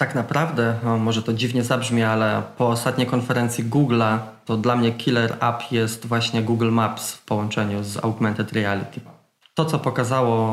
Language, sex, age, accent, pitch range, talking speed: Polish, male, 20-39, native, 115-135 Hz, 160 wpm